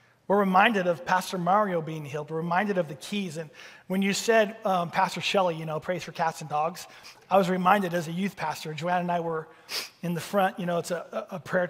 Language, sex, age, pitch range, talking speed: English, male, 30-49, 175-225 Hz, 235 wpm